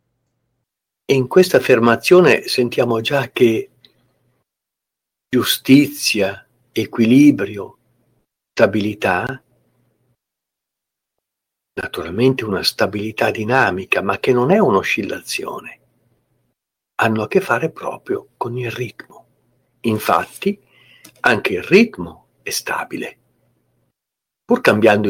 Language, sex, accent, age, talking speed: Italian, male, native, 50-69, 85 wpm